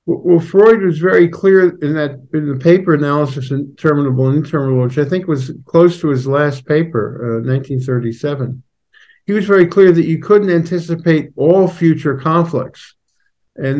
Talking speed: 165 wpm